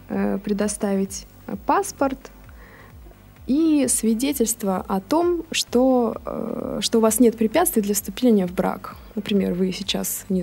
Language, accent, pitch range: Russian, native, 195-240 Hz